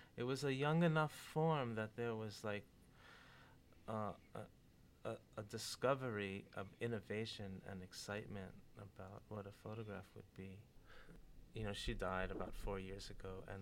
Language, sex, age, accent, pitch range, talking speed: English, male, 30-49, American, 95-115 Hz, 145 wpm